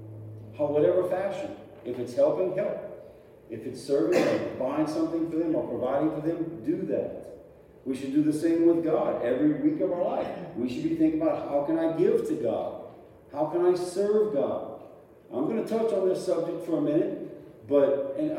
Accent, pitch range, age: American, 145-200 Hz, 40-59